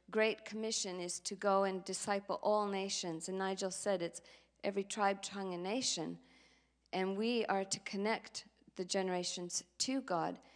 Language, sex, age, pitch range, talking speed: English, female, 40-59, 180-205 Hz, 155 wpm